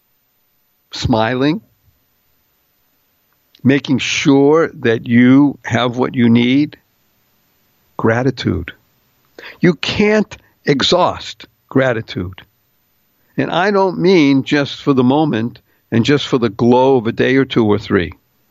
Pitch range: 115-145 Hz